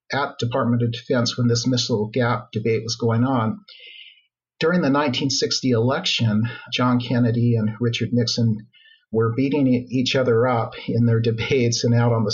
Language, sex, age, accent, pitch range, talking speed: English, male, 50-69, American, 115-130 Hz, 165 wpm